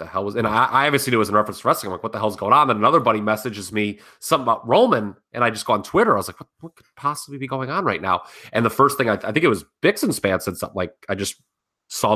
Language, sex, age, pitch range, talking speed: English, male, 30-49, 90-115 Hz, 325 wpm